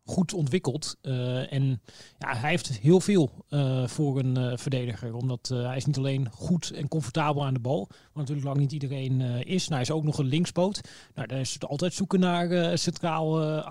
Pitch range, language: 135-160 Hz, Dutch